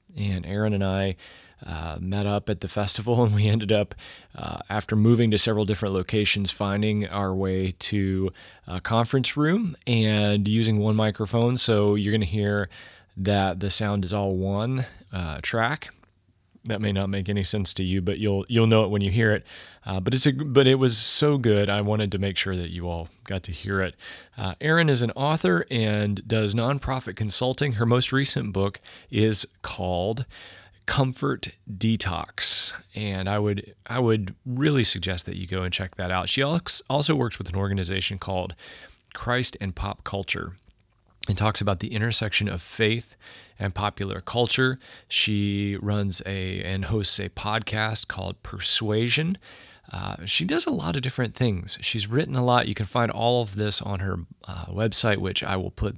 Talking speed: 180 wpm